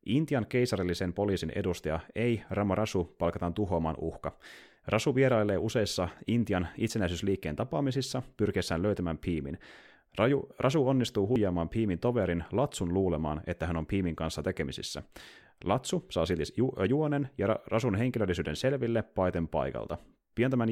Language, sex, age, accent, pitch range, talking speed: Finnish, male, 30-49, native, 85-110 Hz, 130 wpm